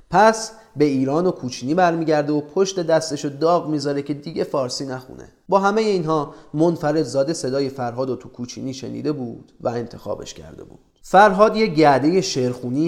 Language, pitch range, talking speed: Persian, 125-160 Hz, 165 wpm